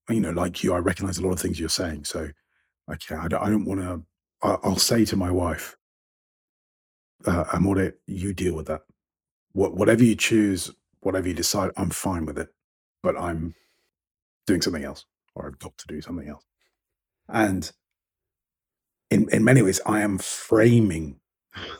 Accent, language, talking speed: British, English, 175 wpm